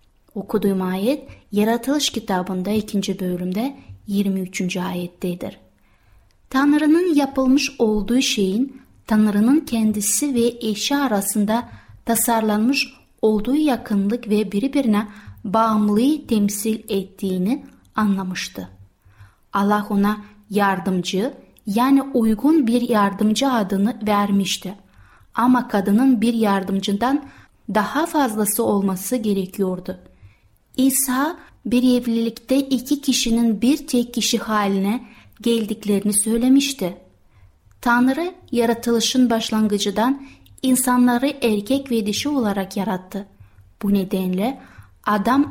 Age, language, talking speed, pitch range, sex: 30-49, Turkish, 85 wpm, 195-245 Hz, female